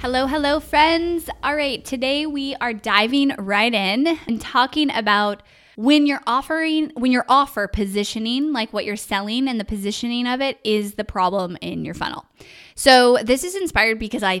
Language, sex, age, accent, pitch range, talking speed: English, female, 10-29, American, 195-260 Hz, 175 wpm